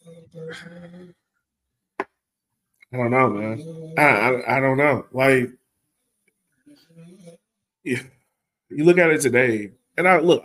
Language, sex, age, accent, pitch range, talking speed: English, male, 20-39, American, 115-170 Hz, 110 wpm